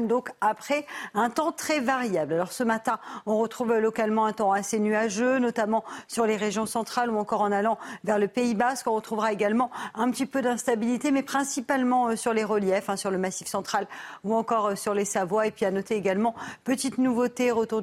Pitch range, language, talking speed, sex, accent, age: 195-235 Hz, French, 200 wpm, female, French, 50-69